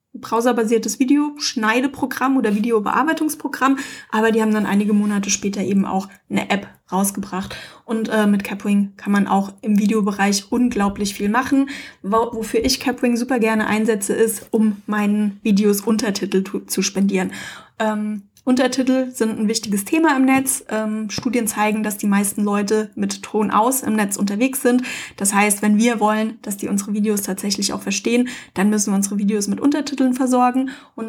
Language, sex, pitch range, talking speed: German, female, 205-245 Hz, 160 wpm